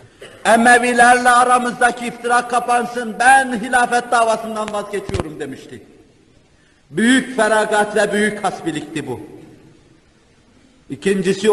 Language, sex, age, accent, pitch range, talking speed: Turkish, male, 50-69, native, 170-210 Hz, 85 wpm